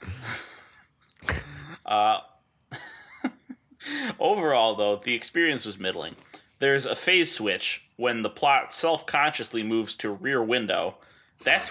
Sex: male